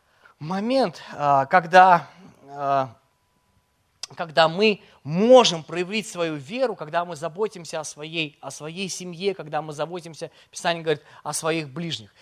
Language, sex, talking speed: Russian, male, 120 wpm